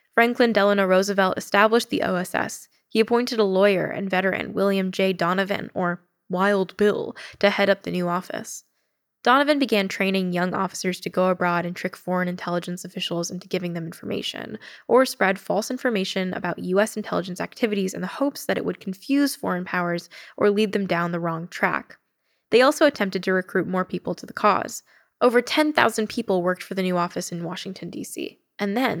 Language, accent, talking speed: English, American, 180 wpm